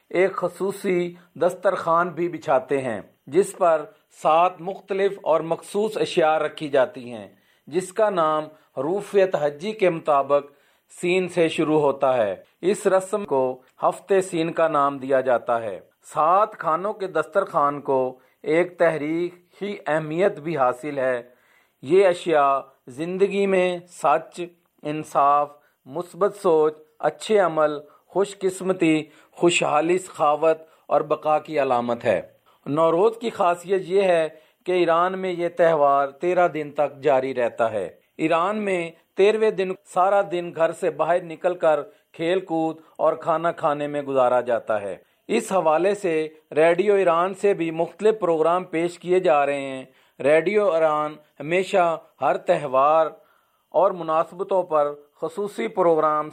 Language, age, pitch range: Urdu, 40-59, 150-185 Hz